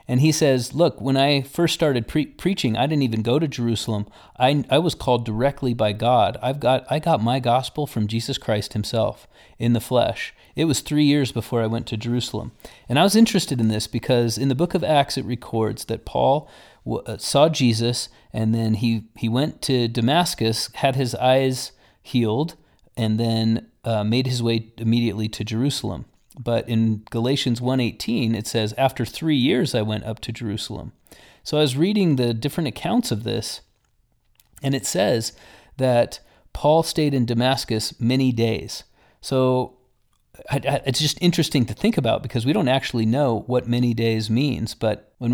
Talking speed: 180 wpm